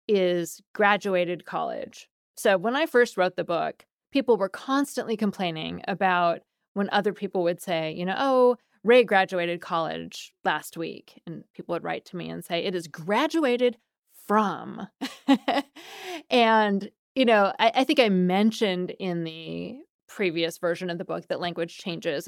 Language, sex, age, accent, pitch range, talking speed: English, female, 20-39, American, 175-230 Hz, 155 wpm